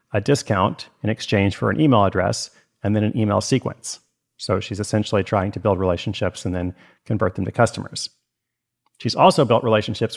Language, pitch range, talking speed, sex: English, 105-135 Hz, 175 wpm, male